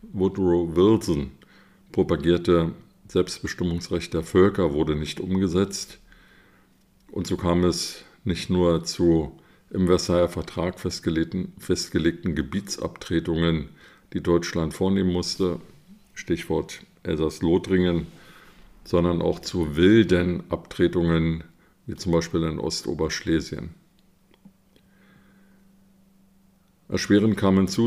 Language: German